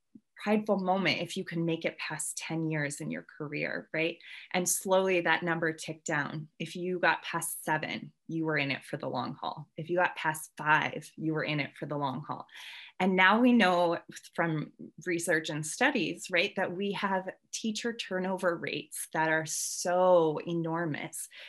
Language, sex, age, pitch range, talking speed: English, female, 20-39, 155-190 Hz, 180 wpm